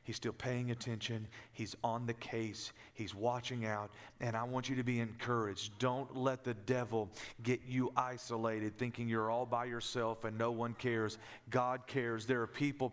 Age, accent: 40-59, American